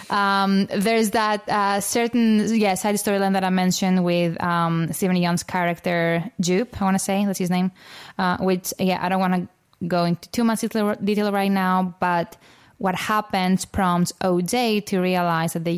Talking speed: 180 wpm